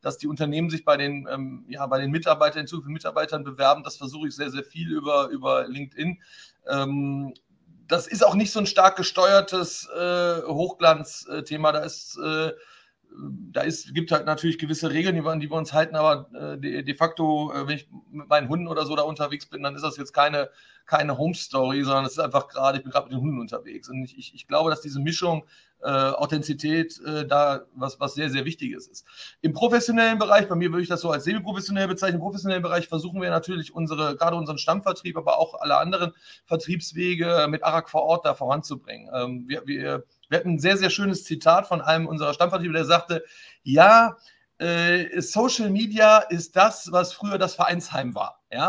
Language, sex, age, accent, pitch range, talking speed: English, male, 30-49, German, 150-180 Hz, 205 wpm